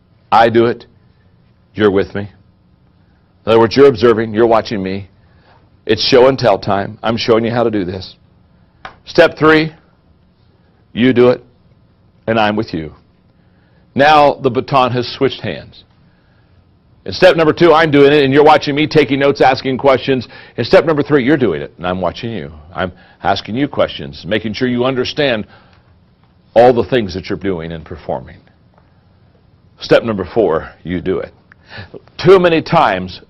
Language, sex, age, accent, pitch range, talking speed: English, male, 60-79, American, 95-135 Hz, 165 wpm